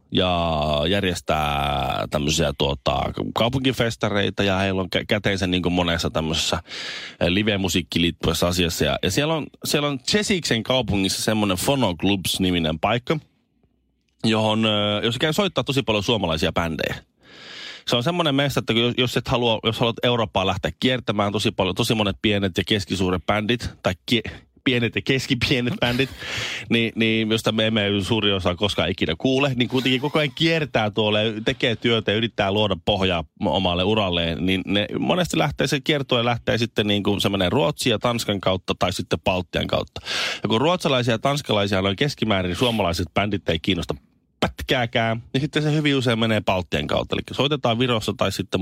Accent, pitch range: native, 95-125 Hz